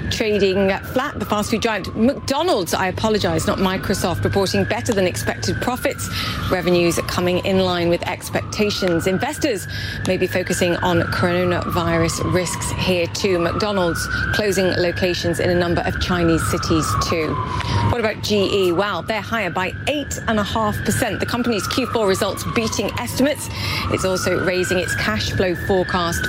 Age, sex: 30-49, female